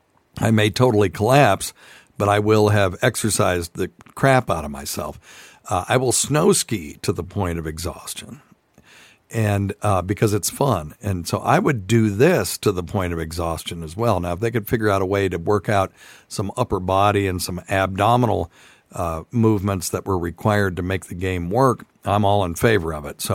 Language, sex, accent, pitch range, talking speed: English, male, American, 90-110 Hz, 195 wpm